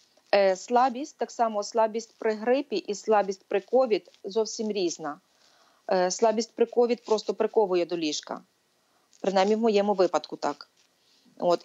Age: 30-49